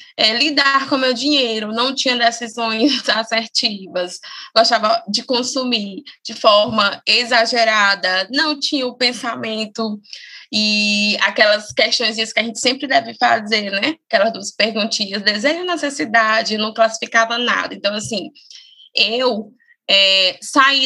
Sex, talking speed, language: female, 125 wpm, Portuguese